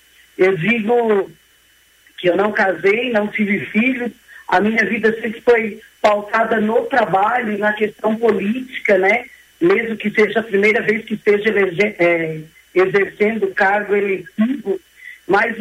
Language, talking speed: Portuguese, 130 wpm